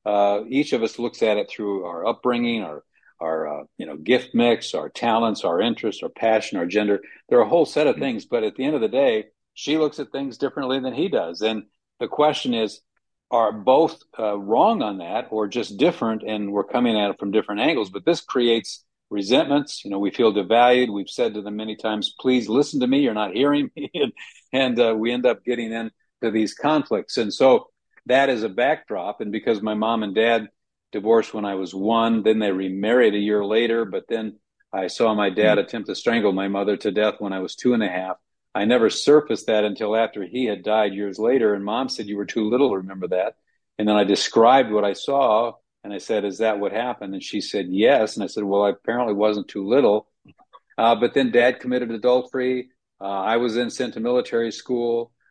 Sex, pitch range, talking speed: male, 105-125 Hz, 225 wpm